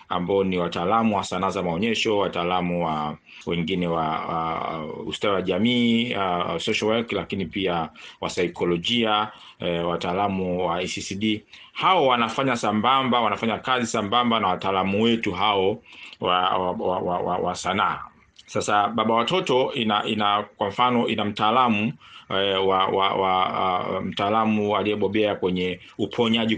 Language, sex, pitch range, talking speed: Swahili, male, 95-120 Hz, 135 wpm